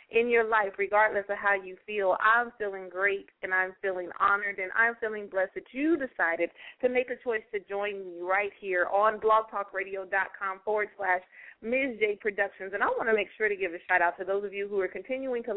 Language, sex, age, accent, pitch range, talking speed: English, female, 30-49, American, 200-295 Hz, 220 wpm